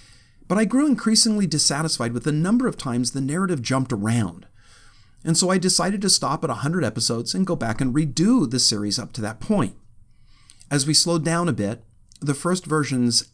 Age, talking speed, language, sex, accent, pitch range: 50-69, 195 wpm, English, male, American, 115-160 Hz